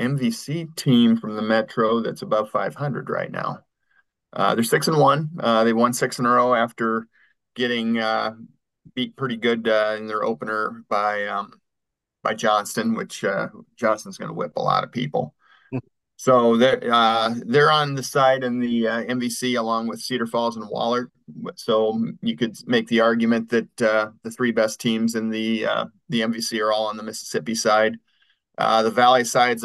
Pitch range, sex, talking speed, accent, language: 110-125 Hz, male, 180 wpm, American, English